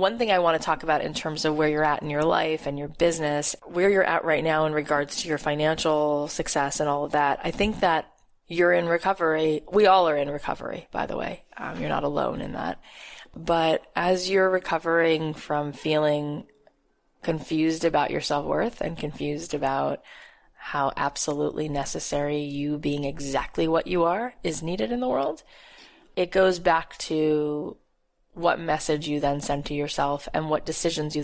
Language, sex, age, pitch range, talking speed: English, female, 20-39, 150-165 Hz, 185 wpm